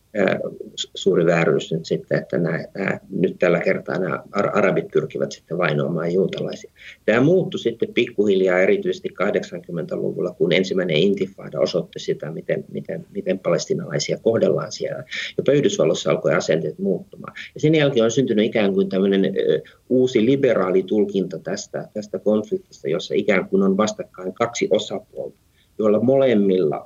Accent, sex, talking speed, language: native, male, 130 wpm, Finnish